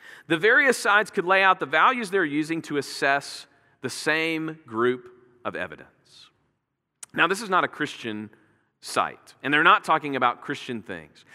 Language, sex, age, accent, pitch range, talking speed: English, male, 40-59, American, 135-185 Hz, 165 wpm